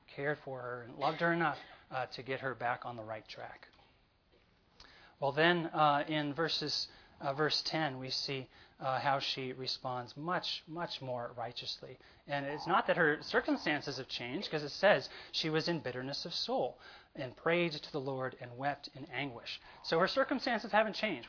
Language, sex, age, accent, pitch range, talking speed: English, male, 30-49, American, 135-165 Hz, 185 wpm